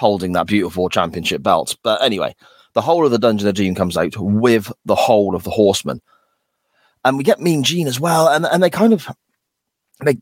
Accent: British